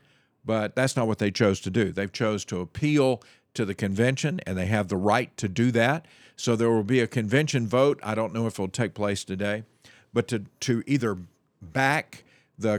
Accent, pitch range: American, 105-130 Hz